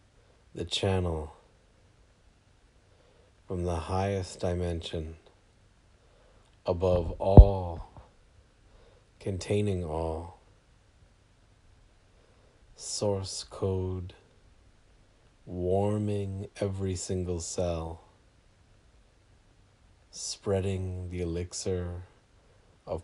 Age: 40-59